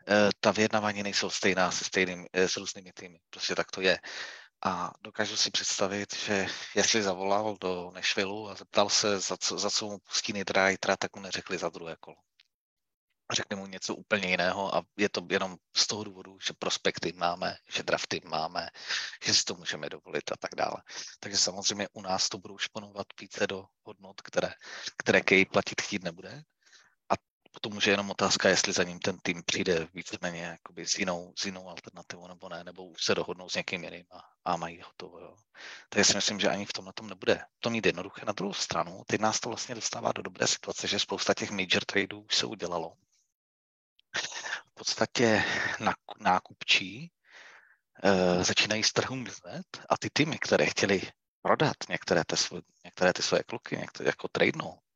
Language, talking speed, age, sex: Czech, 175 wpm, 30-49, male